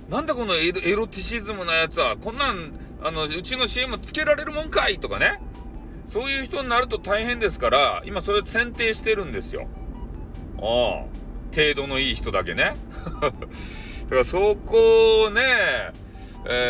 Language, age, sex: Japanese, 40-59, male